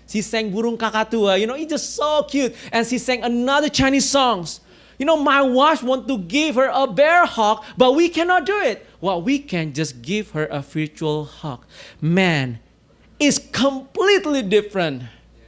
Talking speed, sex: 180 wpm, male